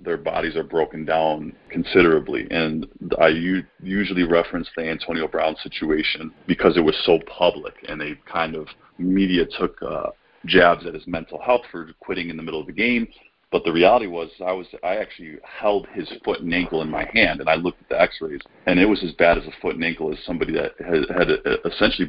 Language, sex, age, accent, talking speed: English, male, 40-59, American, 210 wpm